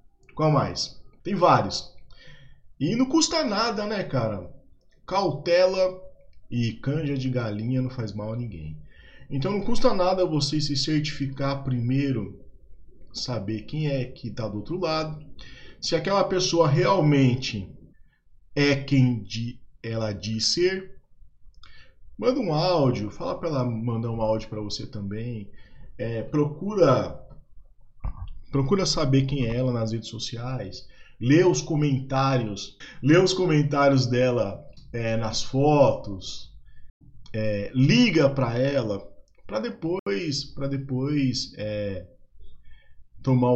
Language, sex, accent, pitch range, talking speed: Portuguese, male, Brazilian, 110-150 Hz, 120 wpm